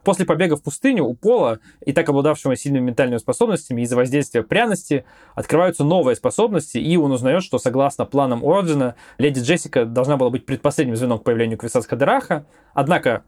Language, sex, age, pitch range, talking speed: Russian, male, 20-39, 125-160 Hz, 165 wpm